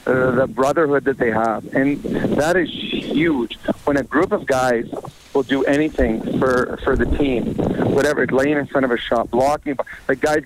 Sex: male